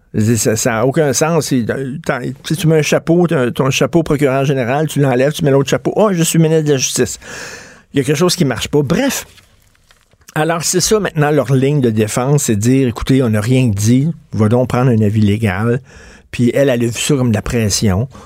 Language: French